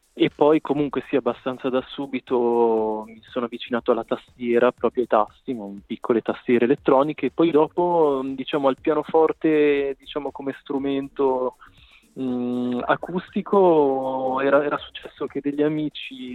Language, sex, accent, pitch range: Italian, male, native, 110-135 Hz